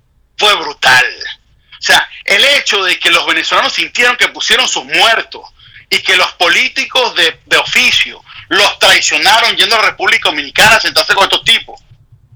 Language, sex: Spanish, male